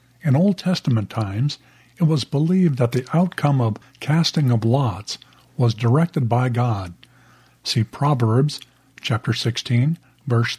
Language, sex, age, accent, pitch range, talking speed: English, male, 50-69, American, 115-145 Hz, 130 wpm